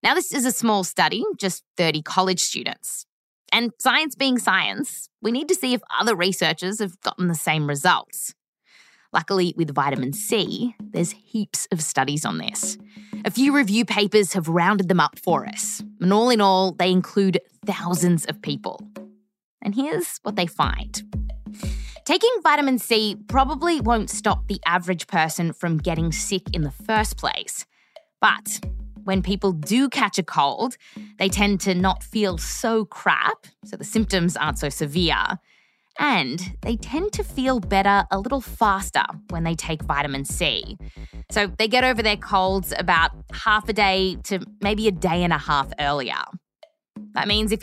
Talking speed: 165 wpm